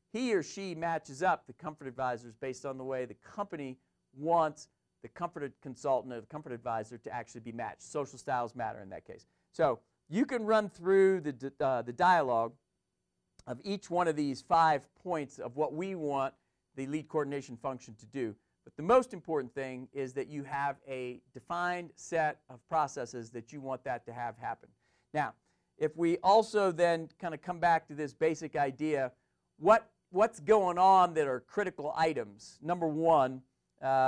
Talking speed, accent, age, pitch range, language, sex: 180 wpm, American, 40-59, 130-175 Hz, English, male